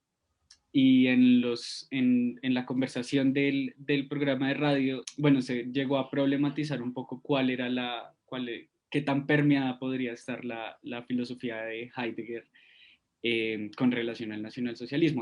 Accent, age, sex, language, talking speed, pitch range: Colombian, 20-39, male, Spanish, 150 wpm, 130-150 Hz